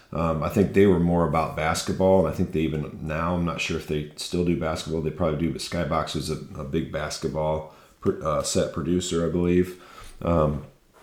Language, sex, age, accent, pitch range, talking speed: English, male, 40-59, American, 80-90 Hz, 205 wpm